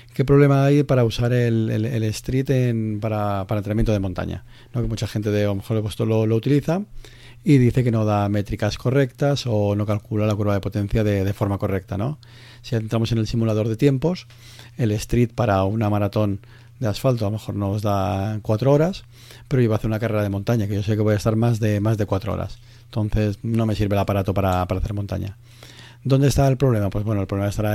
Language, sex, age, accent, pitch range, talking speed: Spanish, male, 30-49, Spanish, 105-120 Hz, 230 wpm